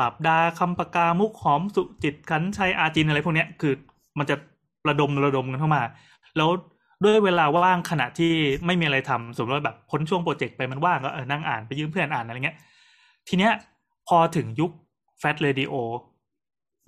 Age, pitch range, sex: 20-39, 135-170 Hz, male